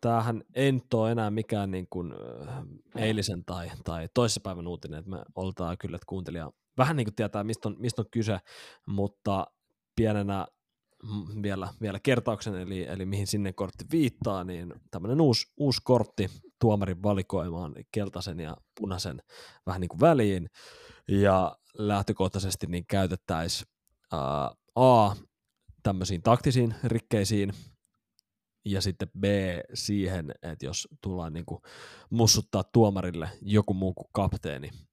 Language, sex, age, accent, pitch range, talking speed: Finnish, male, 20-39, native, 90-110 Hz, 130 wpm